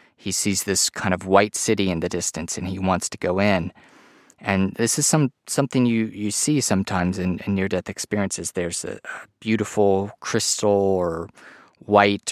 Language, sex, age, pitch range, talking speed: English, male, 30-49, 95-115 Hz, 180 wpm